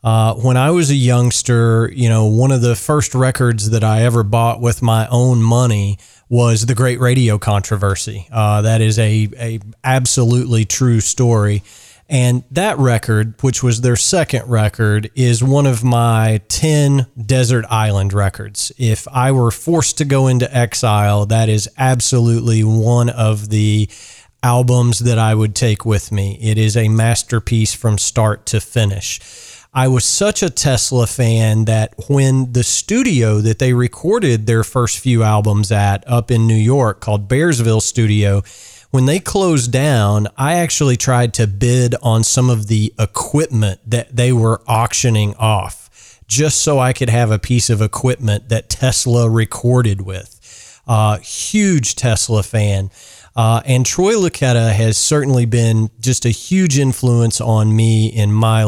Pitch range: 110-125 Hz